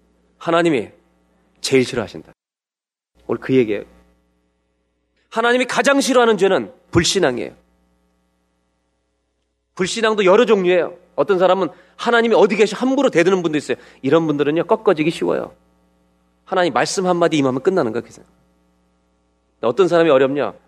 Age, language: 30-49, Korean